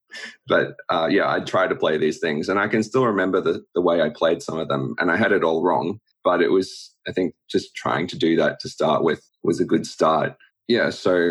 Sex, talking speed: male, 250 wpm